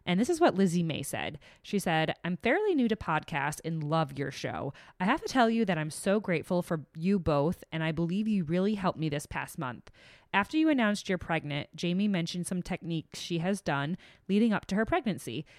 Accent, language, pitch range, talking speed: American, English, 155-195 Hz, 220 wpm